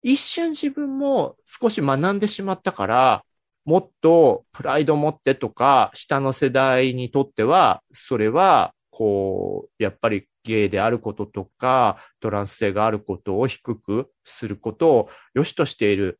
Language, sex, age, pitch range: Japanese, male, 30-49, 125-205 Hz